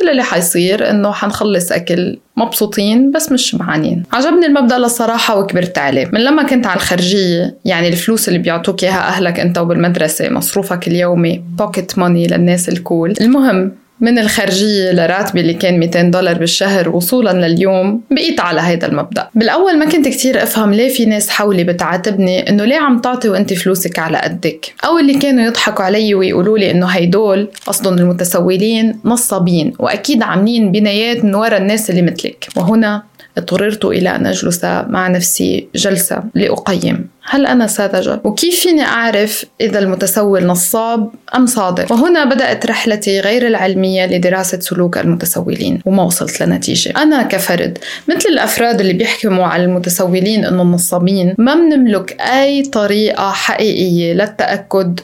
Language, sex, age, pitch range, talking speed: Arabic, female, 20-39, 180-235 Hz, 145 wpm